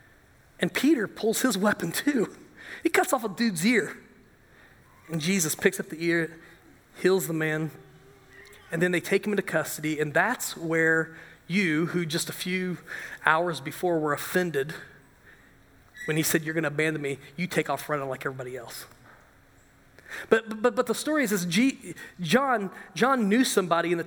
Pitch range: 170-230 Hz